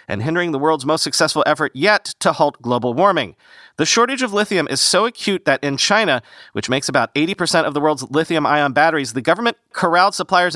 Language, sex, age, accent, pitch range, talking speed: English, male, 40-59, American, 135-175 Hz, 200 wpm